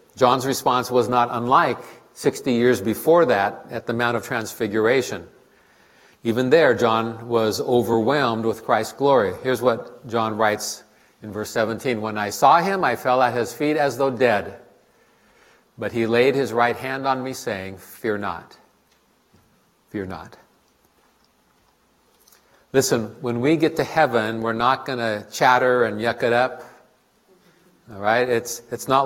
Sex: male